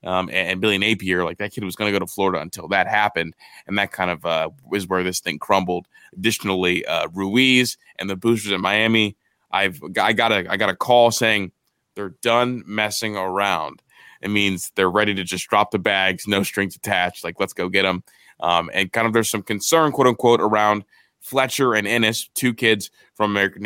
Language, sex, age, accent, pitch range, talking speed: English, male, 20-39, American, 95-110 Hz, 205 wpm